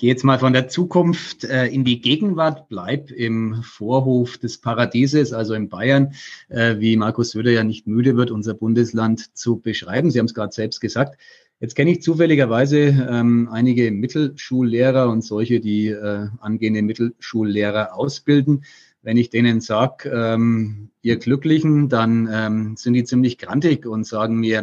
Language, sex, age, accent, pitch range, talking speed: German, male, 30-49, German, 110-135 Hz, 160 wpm